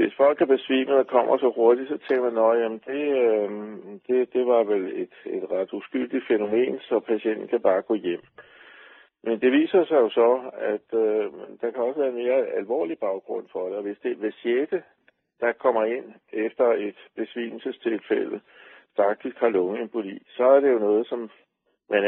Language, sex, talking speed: Danish, male, 180 wpm